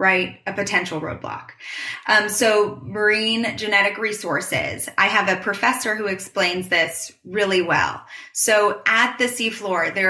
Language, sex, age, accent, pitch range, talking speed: English, female, 20-39, American, 180-215 Hz, 135 wpm